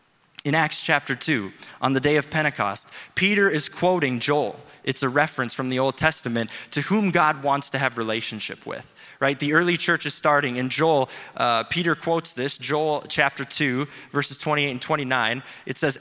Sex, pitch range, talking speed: male, 140-170 Hz, 185 wpm